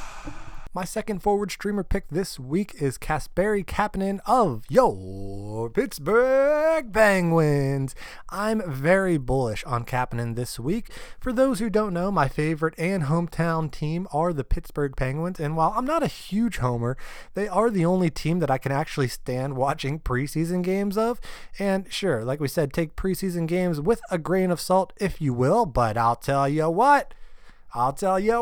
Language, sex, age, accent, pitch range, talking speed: English, male, 20-39, American, 135-200 Hz, 170 wpm